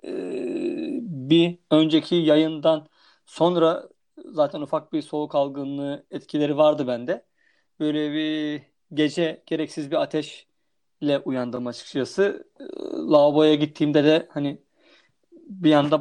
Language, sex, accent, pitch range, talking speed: Turkish, male, native, 145-190 Hz, 95 wpm